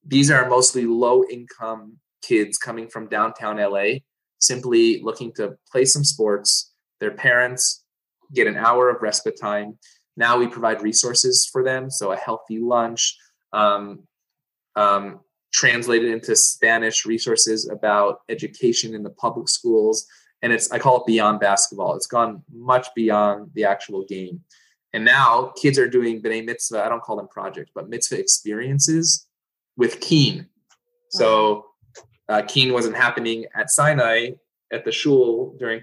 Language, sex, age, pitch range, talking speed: English, male, 20-39, 110-135 Hz, 145 wpm